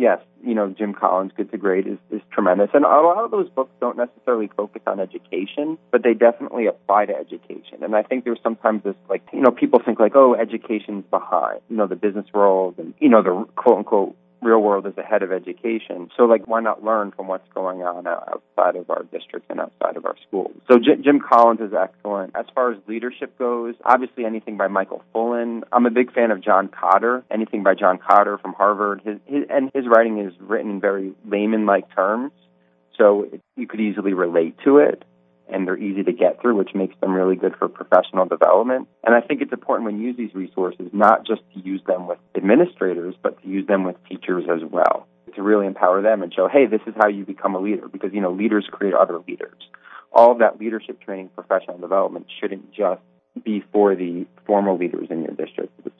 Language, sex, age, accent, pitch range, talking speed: English, male, 30-49, American, 95-120 Hz, 220 wpm